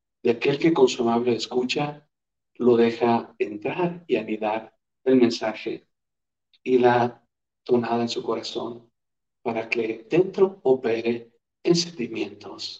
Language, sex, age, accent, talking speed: Spanish, male, 50-69, Mexican, 115 wpm